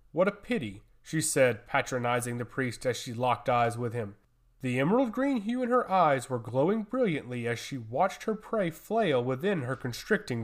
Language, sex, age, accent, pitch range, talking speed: English, male, 30-49, American, 130-220 Hz, 190 wpm